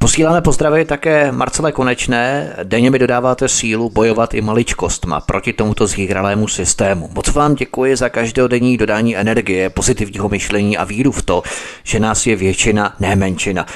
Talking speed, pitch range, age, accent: 155 wpm, 105-130 Hz, 30-49, native